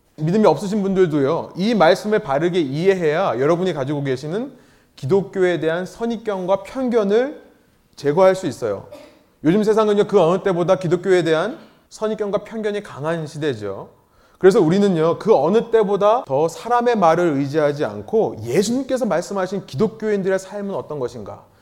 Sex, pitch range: male, 155-210 Hz